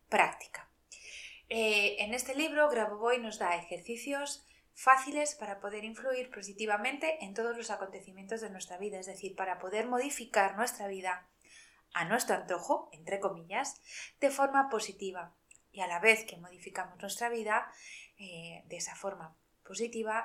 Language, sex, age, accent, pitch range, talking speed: Spanish, female, 20-39, Spanish, 190-235 Hz, 145 wpm